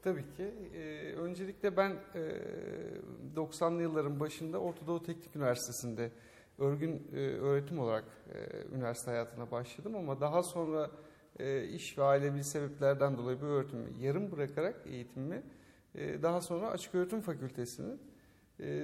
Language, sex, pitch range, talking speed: Turkish, male, 135-170 Hz, 130 wpm